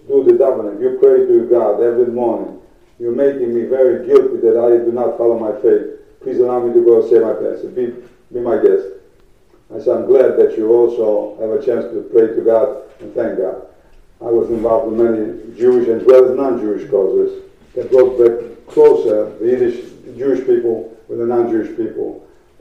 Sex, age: male, 50-69